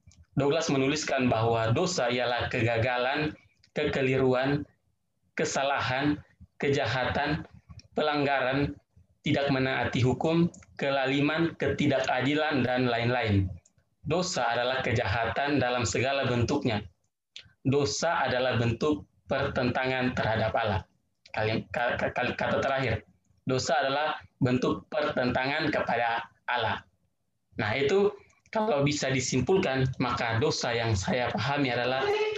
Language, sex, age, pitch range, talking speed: Indonesian, male, 30-49, 115-140 Hz, 90 wpm